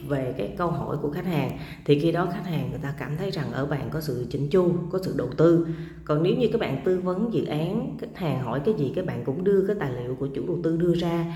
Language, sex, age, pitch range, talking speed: Vietnamese, female, 20-39, 145-185 Hz, 285 wpm